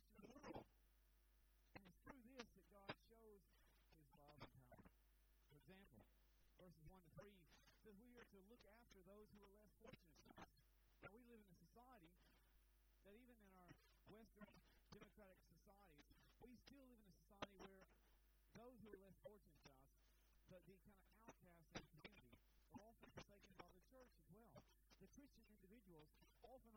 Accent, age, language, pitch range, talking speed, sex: American, 40-59, English, 160-230 Hz, 175 wpm, male